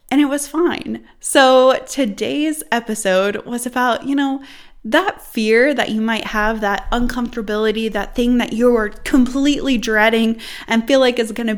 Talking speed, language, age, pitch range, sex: 155 wpm, English, 20-39, 210-280 Hz, female